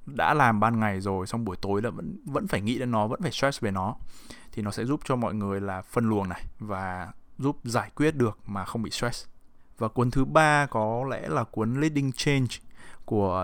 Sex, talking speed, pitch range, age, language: male, 230 wpm, 100-120 Hz, 20-39, English